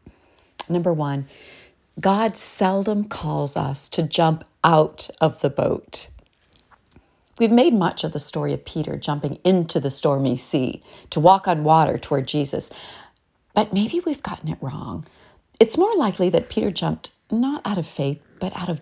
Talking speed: 160 wpm